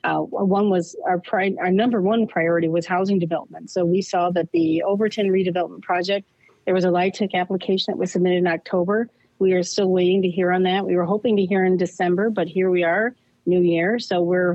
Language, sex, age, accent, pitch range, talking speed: English, female, 40-59, American, 175-200 Hz, 215 wpm